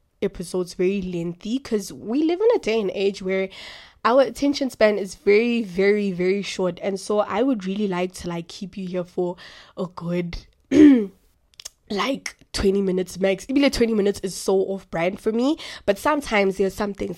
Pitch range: 185-225 Hz